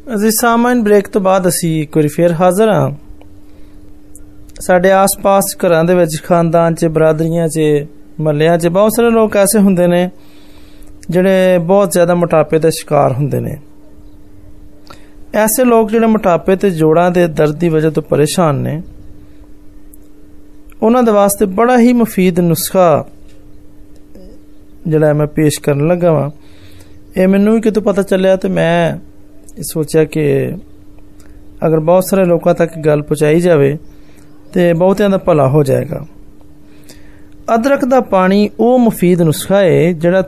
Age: 20-39